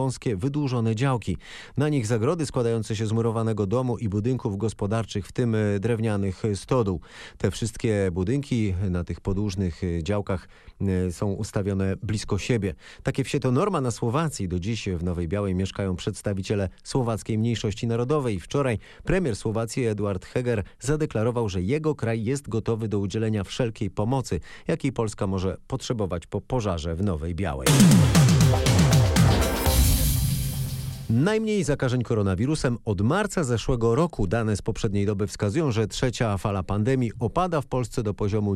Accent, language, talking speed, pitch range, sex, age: native, Polish, 140 wpm, 100-130 Hz, male, 30-49